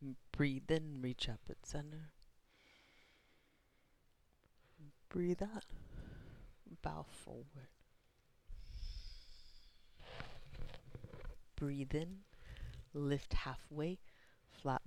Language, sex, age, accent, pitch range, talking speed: English, female, 30-49, American, 120-160 Hz, 60 wpm